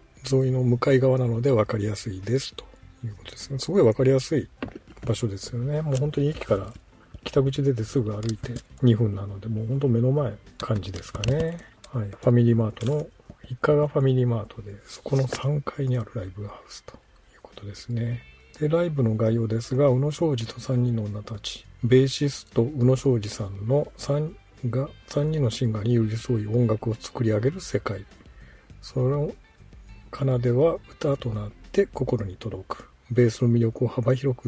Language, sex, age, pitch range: Japanese, male, 50-69, 105-130 Hz